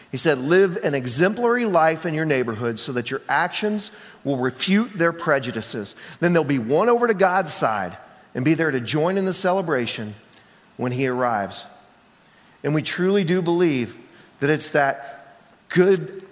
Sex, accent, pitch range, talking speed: male, American, 135-175 Hz, 170 wpm